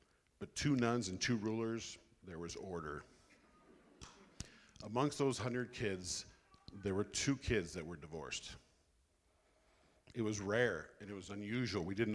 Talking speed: 145 wpm